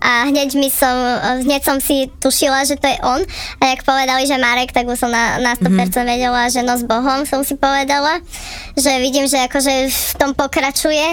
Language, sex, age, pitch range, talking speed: Slovak, male, 20-39, 250-285 Hz, 200 wpm